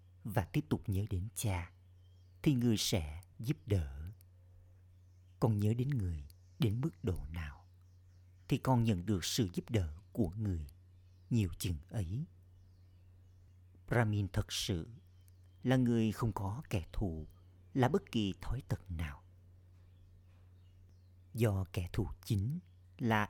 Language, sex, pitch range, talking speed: Vietnamese, male, 90-115 Hz, 130 wpm